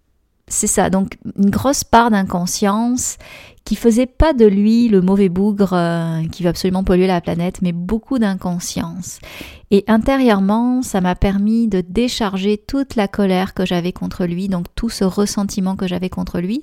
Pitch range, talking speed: 180-215 Hz, 165 wpm